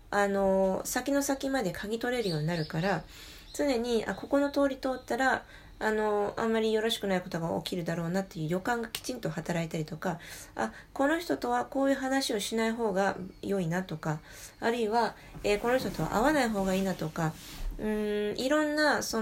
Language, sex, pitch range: Japanese, female, 180-255 Hz